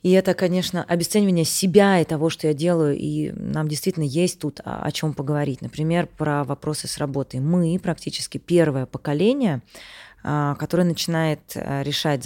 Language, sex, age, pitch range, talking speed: Russian, female, 20-39, 150-185 Hz, 145 wpm